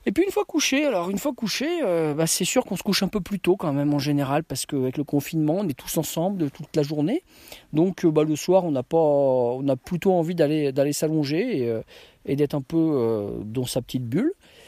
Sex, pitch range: male, 130-170 Hz